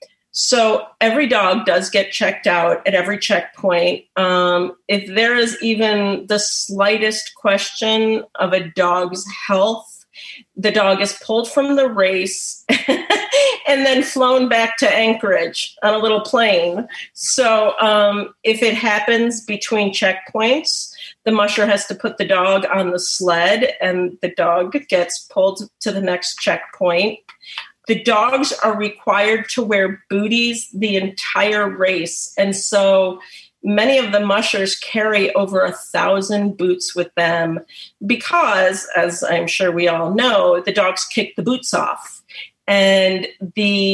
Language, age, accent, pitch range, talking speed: English, 40-59, American, 190-225 Hz, 140 wpm